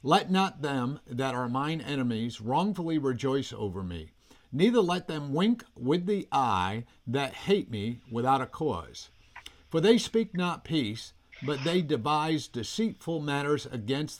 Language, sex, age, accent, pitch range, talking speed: English, male, 50-69, American, 115-155 Hz, 150 wpm